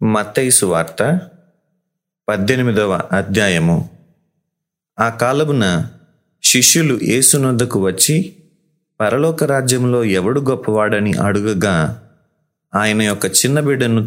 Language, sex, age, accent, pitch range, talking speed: Telugu, male, 30-49, native, 105-145 Hz, 75 wpm